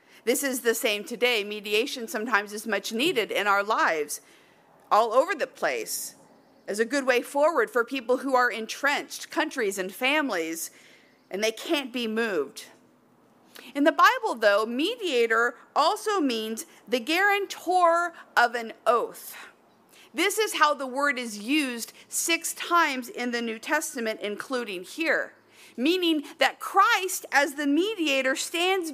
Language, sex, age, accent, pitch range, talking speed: English, female, 50-69, American, 235-330 Hz, 145 wpm